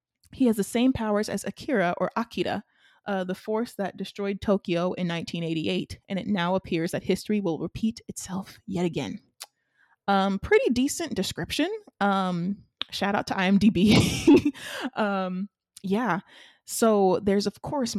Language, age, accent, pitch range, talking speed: English, 20-39, American, 175-210 Hz, 145 wpm